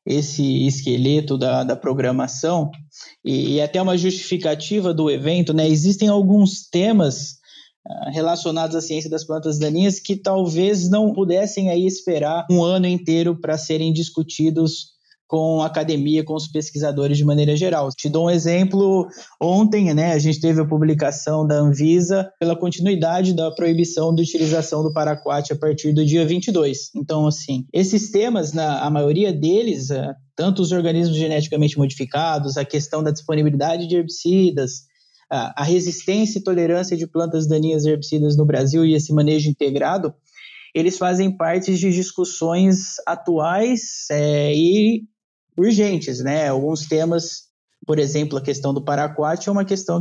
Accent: Brazilian